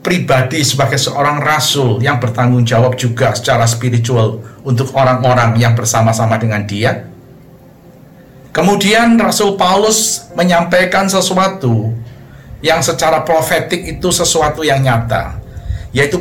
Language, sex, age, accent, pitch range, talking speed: Indonesian, male, 50-69, native, 120-175 Hz, 105 wpm